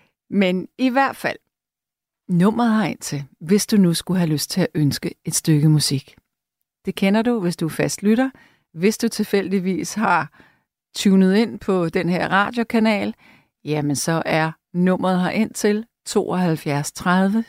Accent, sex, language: native, female, Danish